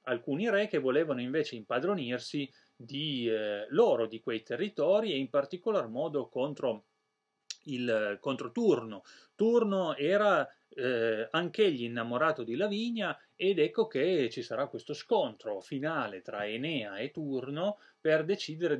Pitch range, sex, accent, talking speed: 115-165 Hz, male, native, 130 wpm